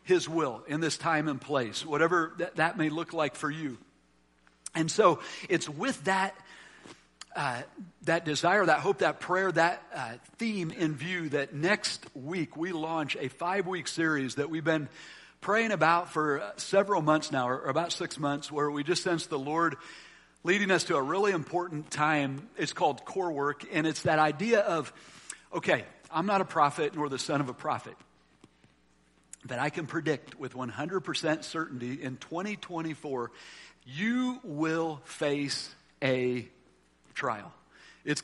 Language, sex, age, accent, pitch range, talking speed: English, male, 50-69, American, 140-180 Hz, 165 wpm